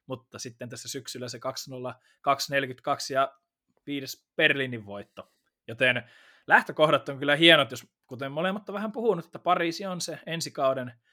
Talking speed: 140 wpm